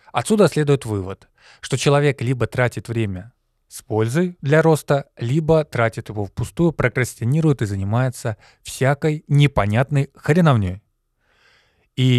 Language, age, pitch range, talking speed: Russian, 20-39, 110-140 Hz, 115 wpm